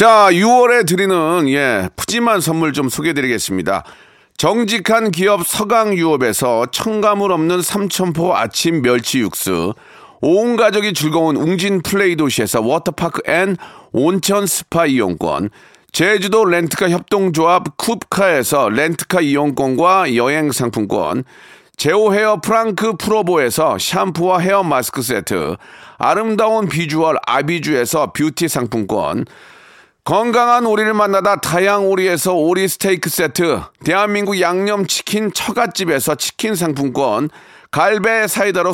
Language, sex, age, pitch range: Korean, male, 40-59, 160-205 Hz